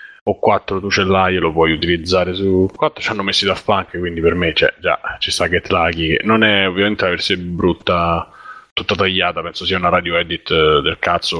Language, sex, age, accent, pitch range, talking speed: Italian, male, 30-49, native, 90-105 Hz, 200 wpm